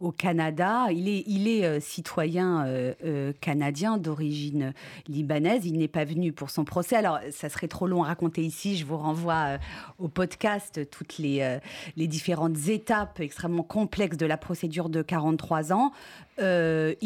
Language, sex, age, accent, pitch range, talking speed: French, female, 40-59, French, 160-195 Hz, 170 wpm